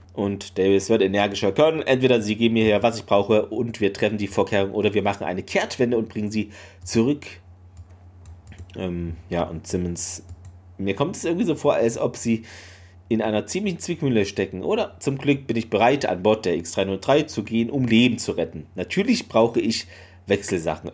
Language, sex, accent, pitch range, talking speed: German, male, German, 90-115 Hz, 185 wpm